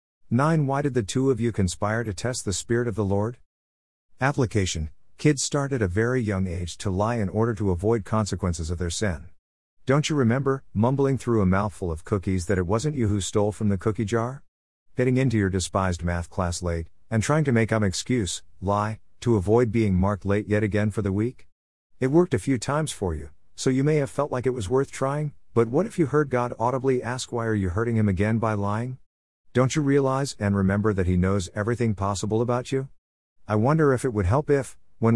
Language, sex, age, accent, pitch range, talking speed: English, male, 50-69, American, 90-120 Hz, 220 wpm